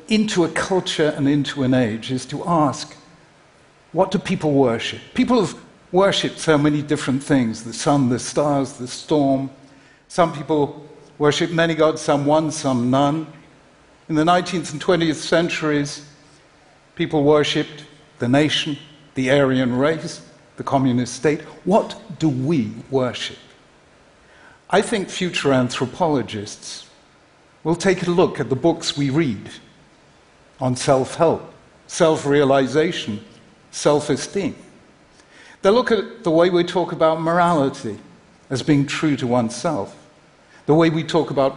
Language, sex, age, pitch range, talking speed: Russian, male, 60-79, 135-165 Hz, 135 wpm